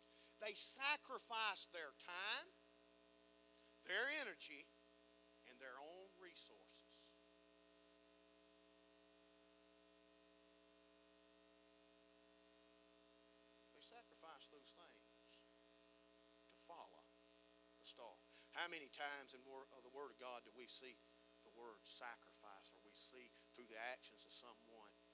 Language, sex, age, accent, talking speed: English, male, 50-69, American, 95 wpm